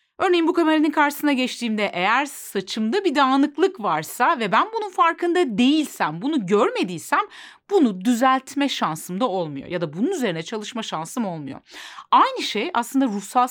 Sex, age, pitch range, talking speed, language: female, 40-59, 185-295 Hz, 145 wpm, Turkish